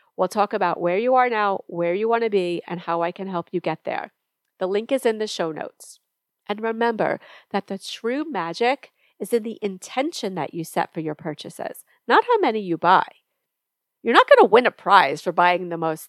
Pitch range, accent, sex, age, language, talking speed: 175-235 Hz, American, female, 40-59, English, 220 wpm